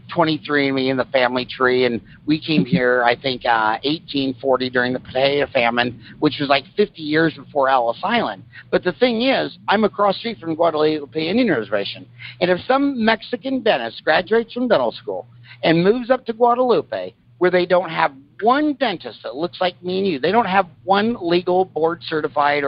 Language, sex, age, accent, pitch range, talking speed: English, male, 50-69, American, 130-200 Hz, 190 wpm